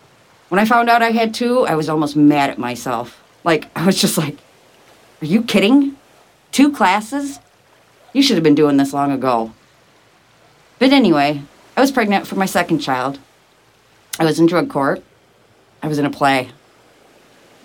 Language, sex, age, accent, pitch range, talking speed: English, female, 40-59, American, 130-200 Hz, 175 wpm